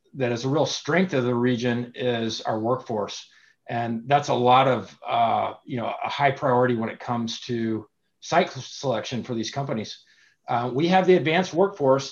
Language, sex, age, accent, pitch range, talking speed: English, male, 50-69, American, 125-160 Hz, 185 wpm